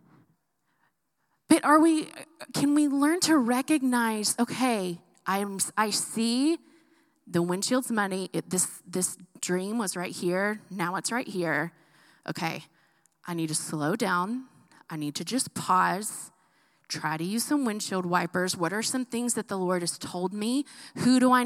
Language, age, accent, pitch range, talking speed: English, 20-39, American, 190-285 Hz, 155 wpm